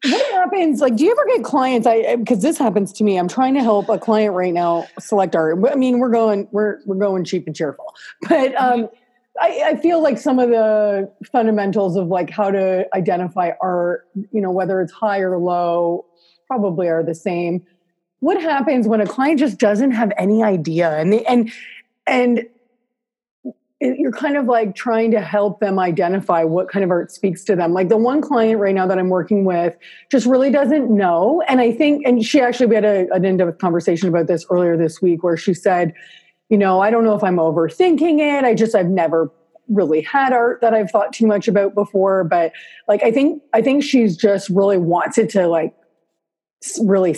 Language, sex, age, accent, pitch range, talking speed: English, female, 30-49, American, 180-245 Hz, 205 wpm